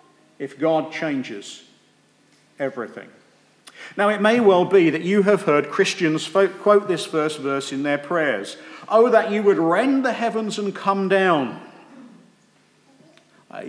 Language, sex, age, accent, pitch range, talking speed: English, male, 50-69, British, 160-205 Hz, 145 wpm